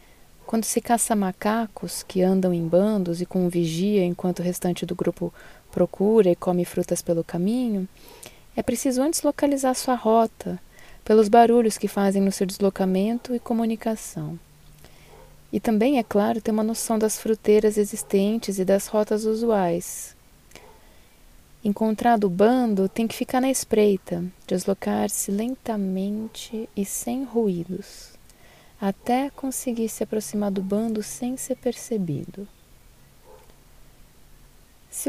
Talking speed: 125 wpm